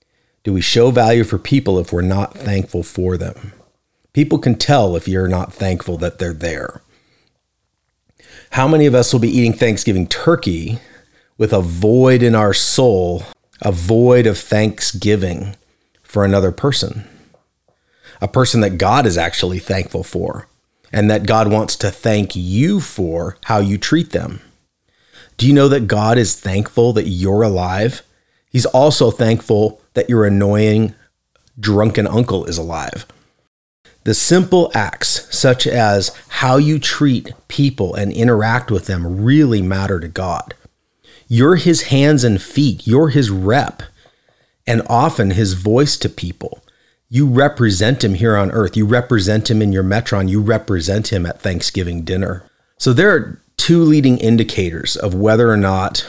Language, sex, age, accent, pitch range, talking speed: English, male, 40-59, American, 95-120 Hz, 155 wpm